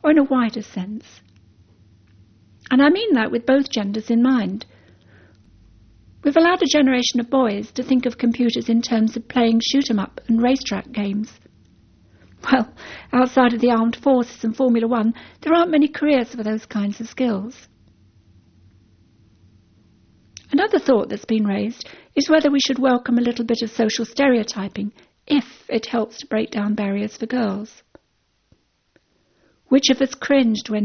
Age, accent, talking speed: 60-79, British, 155 wpm